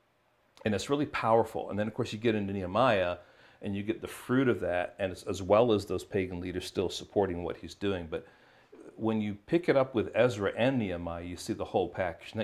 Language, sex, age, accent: English, male, 40-59, American